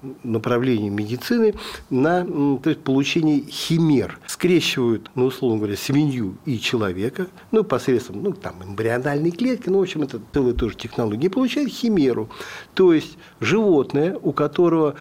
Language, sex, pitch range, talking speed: Russian, male, 125-190 Hz, 140 wpm